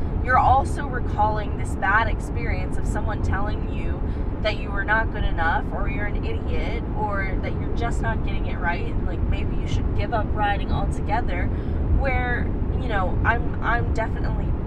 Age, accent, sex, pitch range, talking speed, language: 20-39, American, female, 85-90 Hz, 175 wpm, English